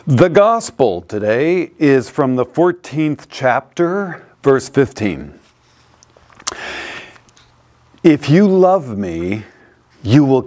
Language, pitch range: English, 115-160 Hz